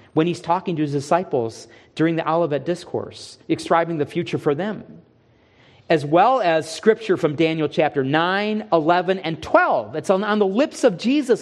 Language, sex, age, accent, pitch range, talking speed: English, male, 40-59, American, 140-205 Hz, 170 wpm